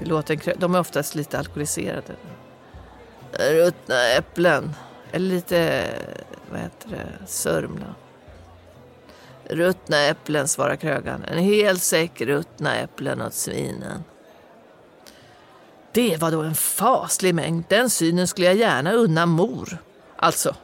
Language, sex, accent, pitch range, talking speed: Swedish, female, native, 155-195 Hz, 110 wpm